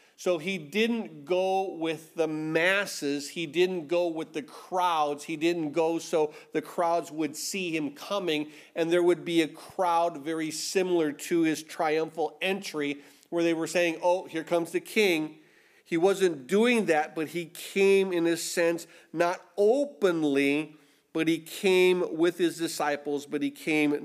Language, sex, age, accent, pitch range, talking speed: English, male, 40-59, American, 145-180 Hz, 160 wpm